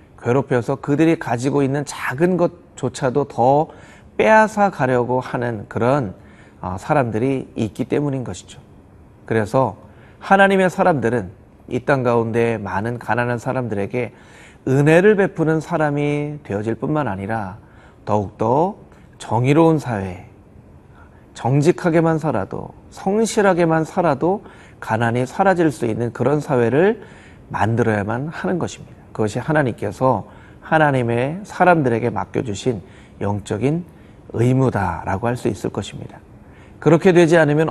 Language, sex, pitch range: Korean, male, 110-155 Hz